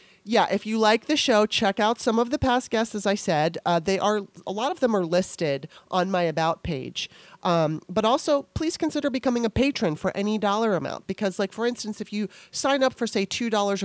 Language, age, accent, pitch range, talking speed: English, 30-49, American, 180-215 Hz, 225 wpm